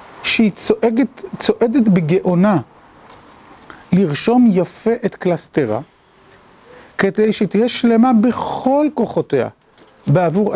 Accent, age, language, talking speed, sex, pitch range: native, 50-69, Hebrew, 80 wpm, male, 175-225 Hz